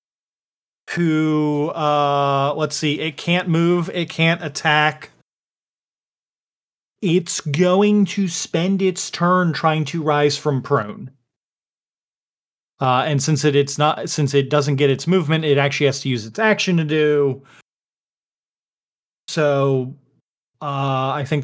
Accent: American